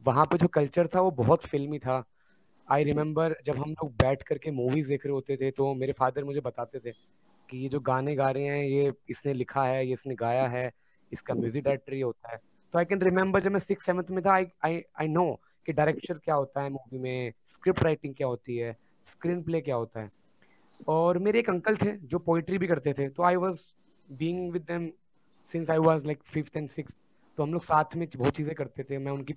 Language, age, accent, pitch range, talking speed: Hindi, 20-39, native, 135-175 Hz, 225 wpm